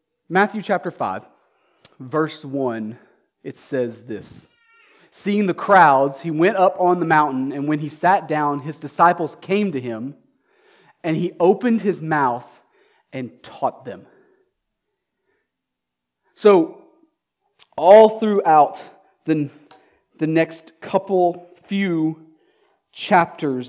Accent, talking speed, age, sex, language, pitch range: American, 110 wpm, 30-49, male, English, 165-265 Hz